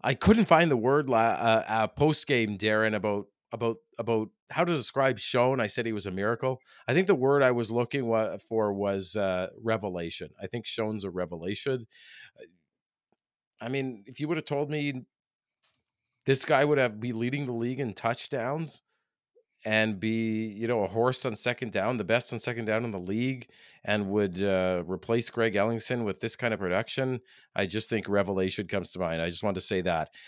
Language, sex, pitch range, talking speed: English, male, 100-130 Hz, 200 wpm